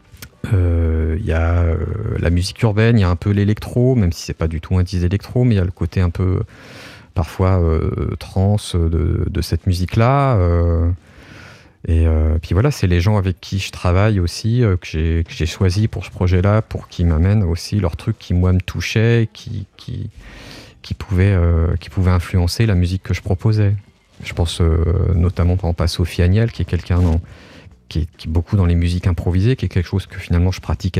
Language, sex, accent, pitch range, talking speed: French, male, French, 85-105 Hz, 215 wpm